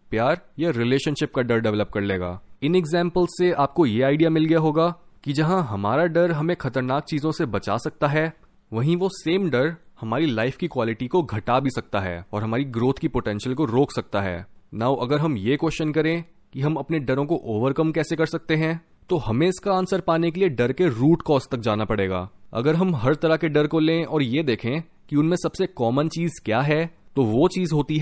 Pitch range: 120-165 Hz